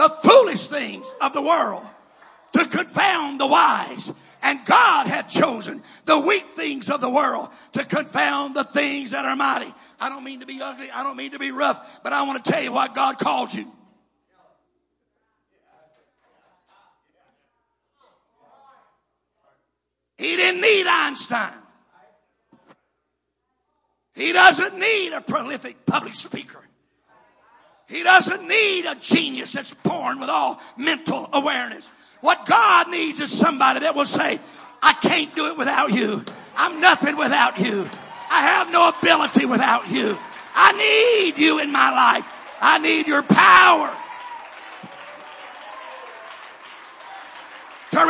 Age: 50-69